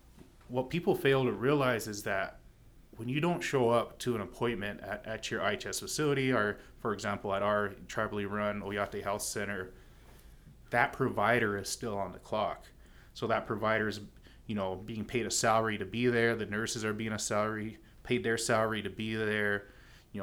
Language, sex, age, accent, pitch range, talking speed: English, male, 30-49, American, 105-120 Hz, 185 wpm